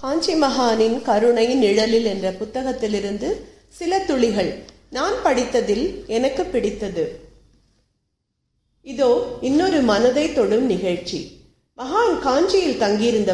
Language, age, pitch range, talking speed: Tamil, 40-59, 215-300 Hz, 60 wpm